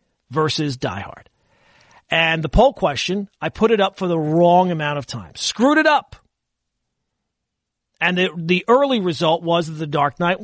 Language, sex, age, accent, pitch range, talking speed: English, male, 40-59, American, 170-225 Hz, 165 wpm